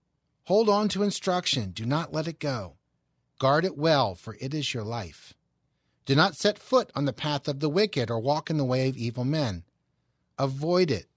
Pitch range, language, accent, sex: 125-170 Hz, English, American, male